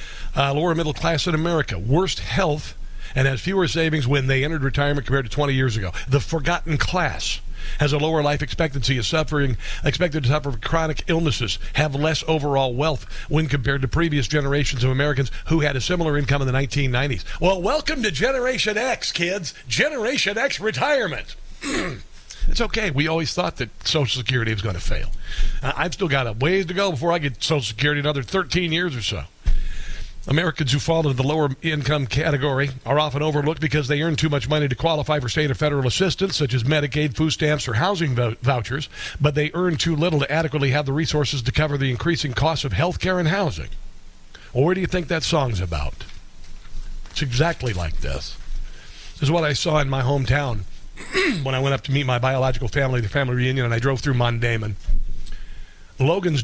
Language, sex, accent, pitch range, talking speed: English, male, American, 130-160 Hz, 195 wpm